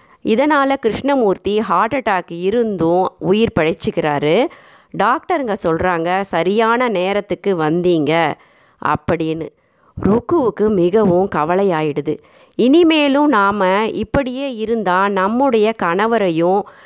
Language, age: Tamil, 30-49